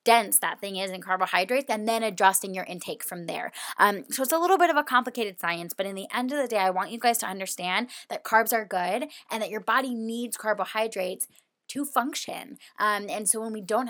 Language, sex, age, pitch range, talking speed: English, female, 20-39, 185-225 Hz, 235 wpm